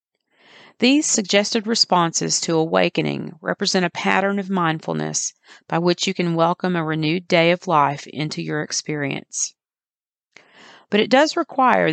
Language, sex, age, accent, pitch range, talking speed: English, female, 40-59, American, 150-200 Hz, 135 wpm